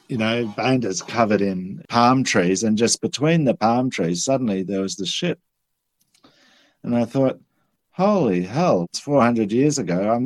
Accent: Australian